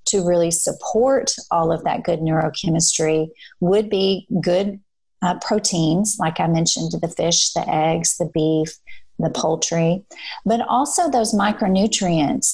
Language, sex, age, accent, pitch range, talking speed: English, female, 30-49, American, 170-210 Hz, 135 wpm